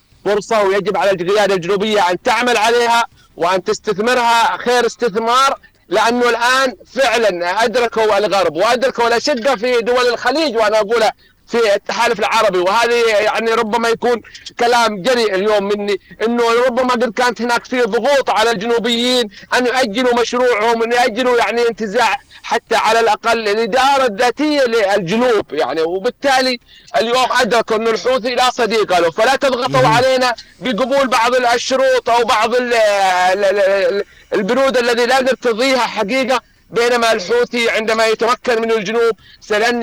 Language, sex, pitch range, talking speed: Arabic, male, 210-250 Hz, 130 wpm